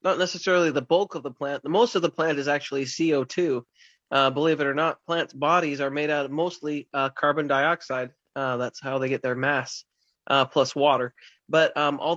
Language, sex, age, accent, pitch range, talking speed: English, male, 30-49, American, 140-165 Hz, 210 wpm